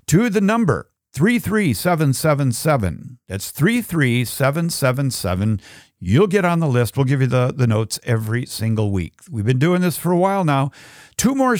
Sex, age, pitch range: male, 50-69, 115-165 Hz